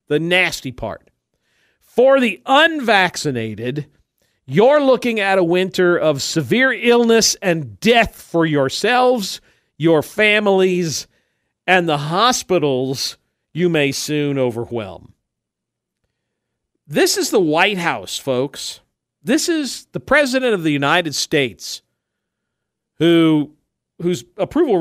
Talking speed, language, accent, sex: 105 wpm, English, American, male